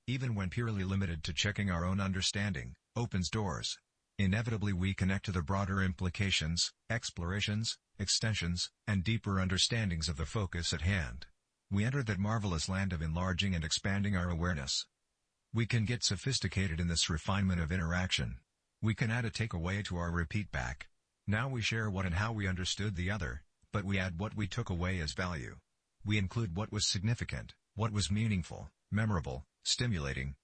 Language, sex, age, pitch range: English, male, 50-69, 85-105 Hz